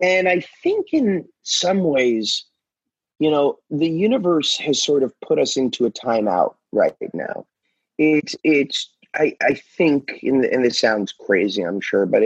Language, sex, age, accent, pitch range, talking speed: English, male, 30-49, American, 120-160 Hz, 165 wpm